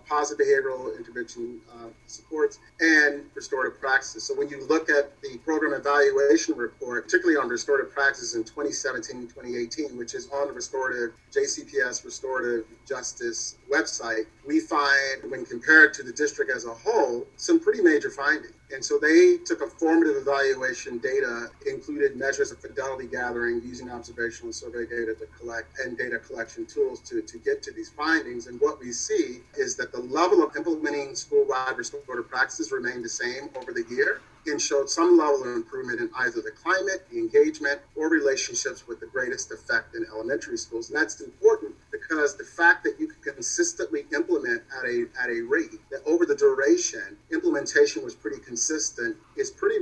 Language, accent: English, American